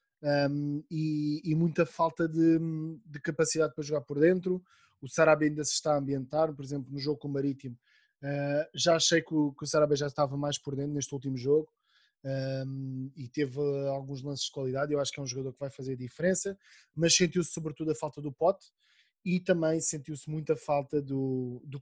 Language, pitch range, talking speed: Portuguese, 140-160 Hz, 200 wpm